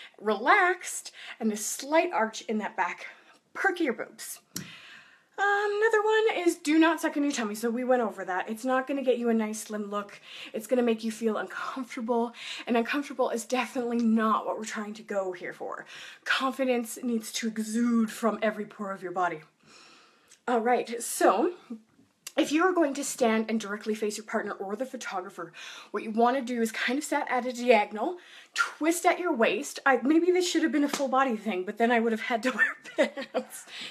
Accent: American